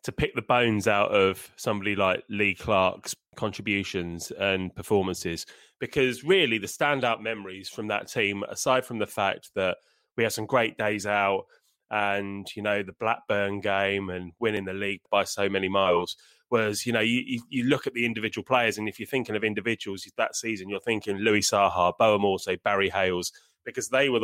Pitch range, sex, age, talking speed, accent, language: 100-120 Hz, male, 20-39, 185 wpm, British, English